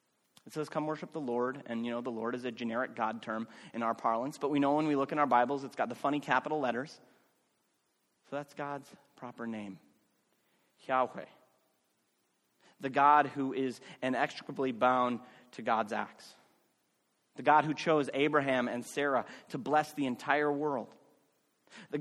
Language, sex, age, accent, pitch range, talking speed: English, male, 30-49, American, 125-165 Hz, 170 wpm